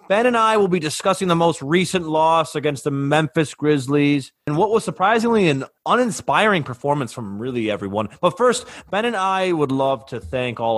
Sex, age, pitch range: male, 30-49, 115-155 Hz